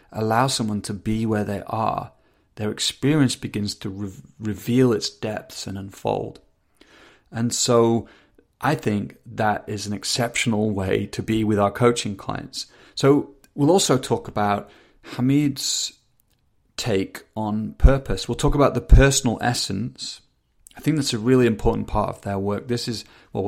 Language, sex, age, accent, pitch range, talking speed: English, male, 30-49, British, 105-125 Hz, 150 wpm